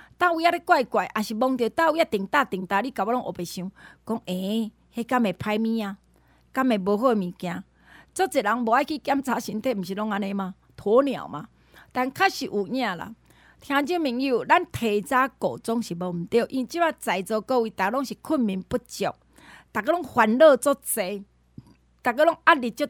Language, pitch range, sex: Chinese, 210-285 Hz, female